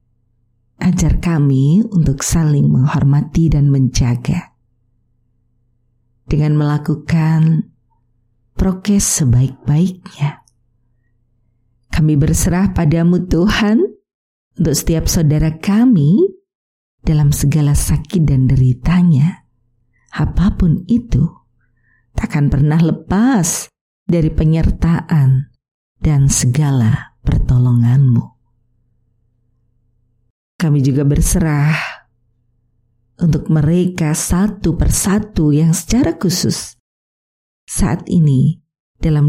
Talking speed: 75 wpm